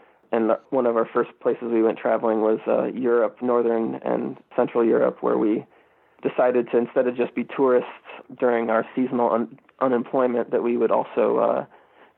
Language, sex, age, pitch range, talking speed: English, male, 20-39, 115-130 Hz, 170 wpm